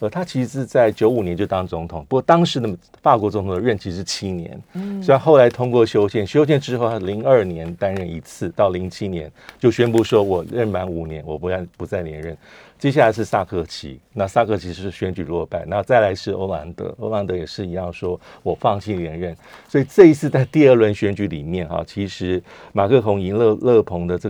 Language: Chinese